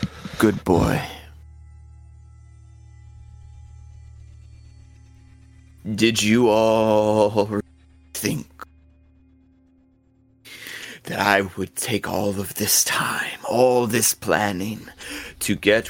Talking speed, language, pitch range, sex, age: 70 wpm, English, 85-110 Hz, male, 30-49